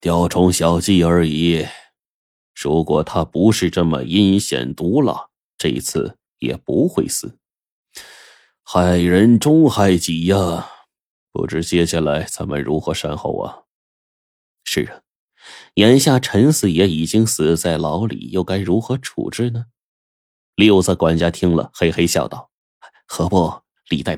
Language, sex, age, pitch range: Chinese, male, 20-39, 85-110 Hz